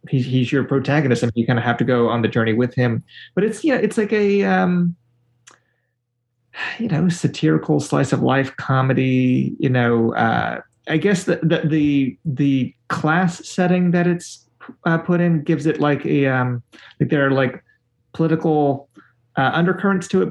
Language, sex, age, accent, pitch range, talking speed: English, male, 30-49, American, 120-155 Hz, 175 wpm